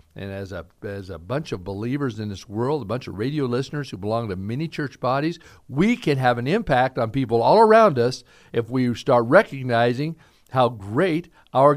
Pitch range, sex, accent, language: 120-185 Hz, male, American, English